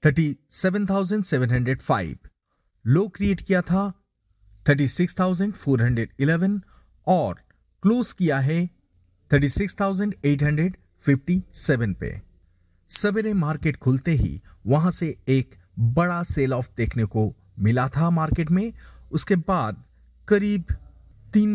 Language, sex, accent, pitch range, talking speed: Hindi, male, native, 120-185 Hz, 130 wpm